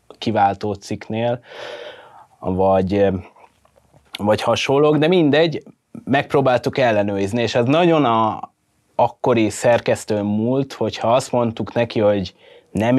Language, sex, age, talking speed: Hungarian, male, 20-39, 95 wpm